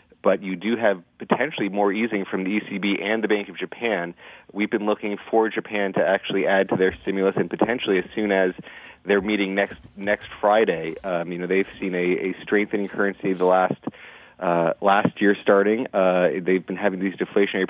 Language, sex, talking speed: English, male, 195 wpm